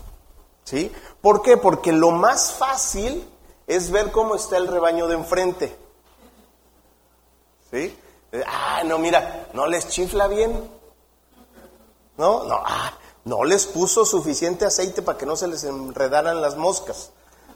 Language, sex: Spanish, male